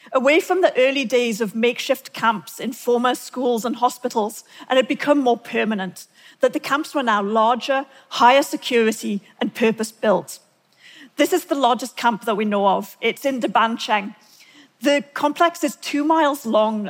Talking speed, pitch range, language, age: 165 wpm, 220-270 Hz, English, 40-59